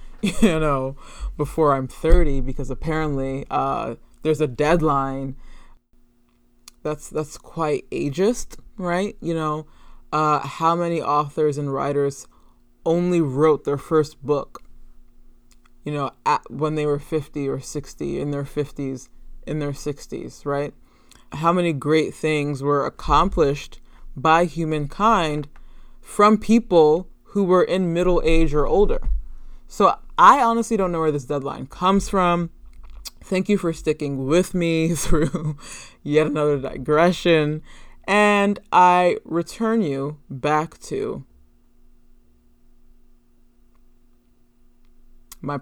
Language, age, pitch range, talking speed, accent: English, 20-39, 125-165 Hz, 115 wpm, American